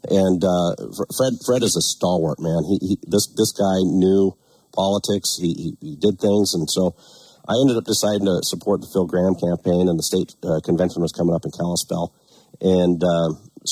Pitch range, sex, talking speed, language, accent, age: 85-100 Hz, male, 195 wpm, English, American, 50-69